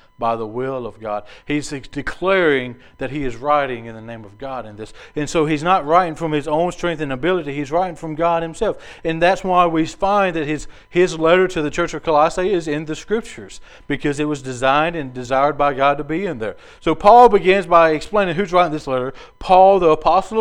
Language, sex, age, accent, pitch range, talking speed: English, male, 40-59, American, 140-175 Hz, 225 wpm